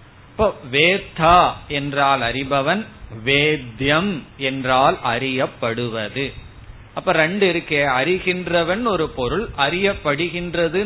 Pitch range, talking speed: 120-150 Hz, 65 wpm